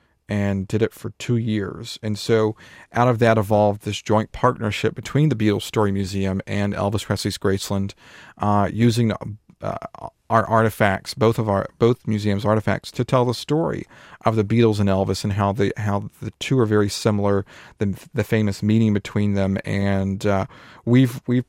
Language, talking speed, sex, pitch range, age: English, 175 wpm, male, 100-115 Hz, 40-59